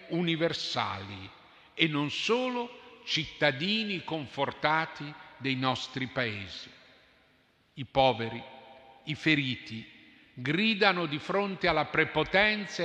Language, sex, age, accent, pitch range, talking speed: Italian, male, 50-69, native, 130-180 Hz, 85 wpm